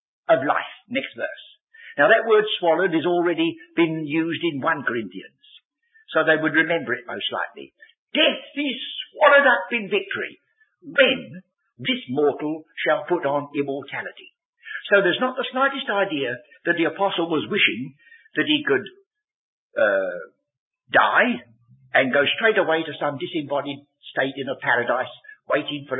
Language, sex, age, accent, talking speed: English, male, 60-79, British, 150 wpm